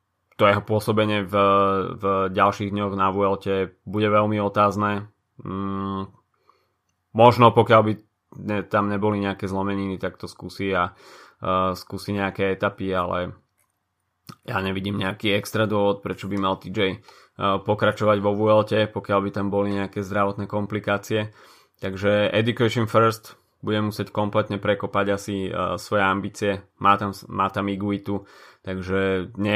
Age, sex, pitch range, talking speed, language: 20-39, male, 95-105 Hz, 125 wpm, Slovak